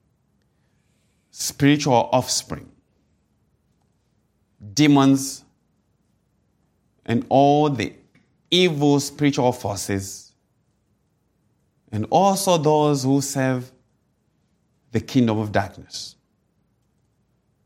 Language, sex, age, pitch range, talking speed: English, male, 50-69, 105-155 Hz, 60 wpm